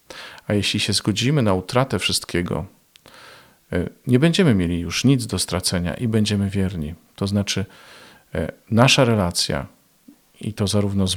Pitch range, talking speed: 95-120 Hz, 135 wpm